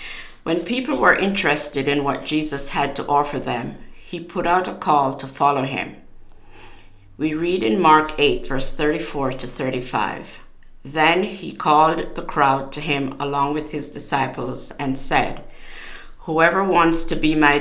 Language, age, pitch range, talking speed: English, 50-69, 135-160 Hz, 155 wpm